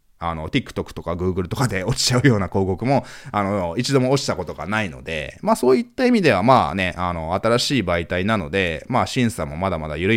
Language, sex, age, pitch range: Japanese, male, 20-39, 90-135 Hz